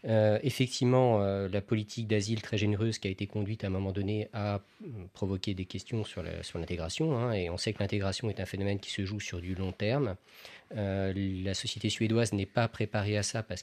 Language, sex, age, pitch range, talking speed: French, male, 40-59, 100-120 Hz, 210 wpm